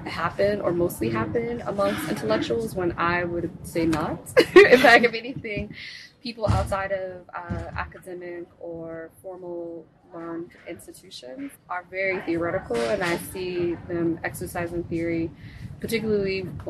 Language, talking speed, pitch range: English, 120 wpm, 165-195 Hz